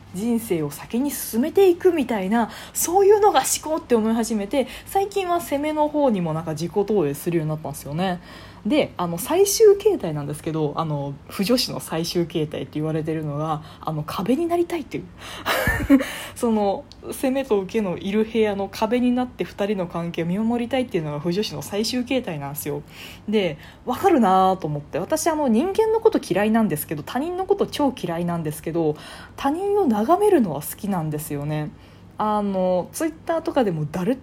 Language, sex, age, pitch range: Japanese, female, 20-39, 160-270 Hz